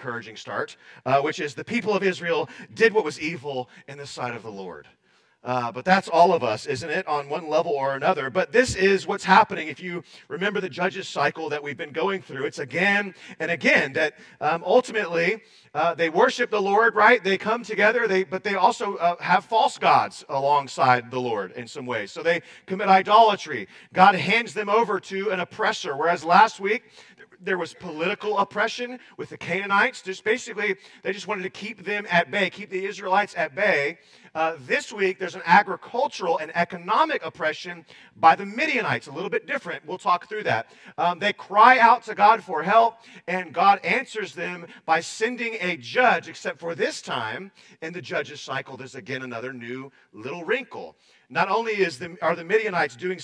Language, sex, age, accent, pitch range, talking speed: English, male, 40-59, American, 155-210 Hz, 195 wpm